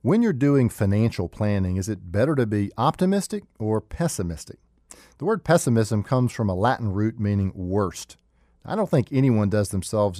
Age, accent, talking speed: 40-59, American, 170 wpm